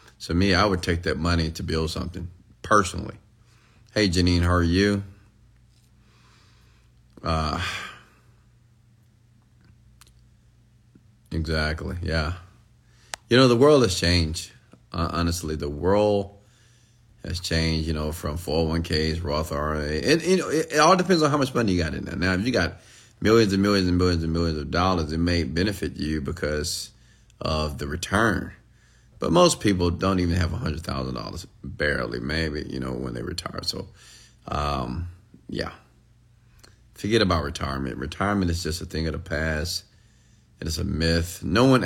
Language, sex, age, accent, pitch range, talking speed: English, male, 30-49, American, 80-115 Hz, 150 wpm